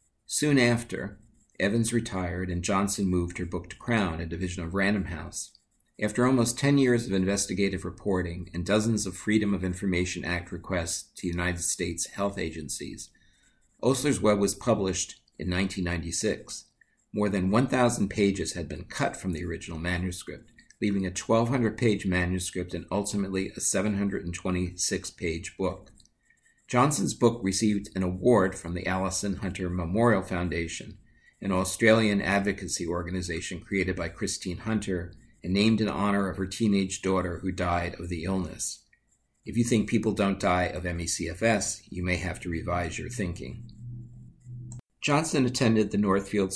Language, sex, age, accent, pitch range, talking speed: English, male, 50-69, American, 90-105 Hz, 145 wpm